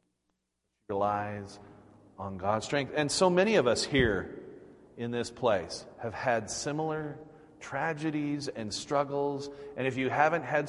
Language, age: English, 40-59